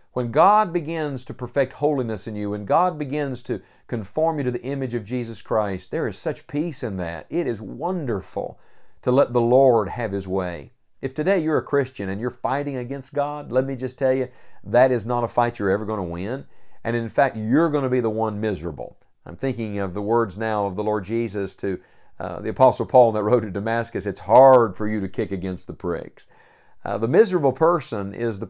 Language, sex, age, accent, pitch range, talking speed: English, male, 50-69, American, 105-140 Hz, 220 wpm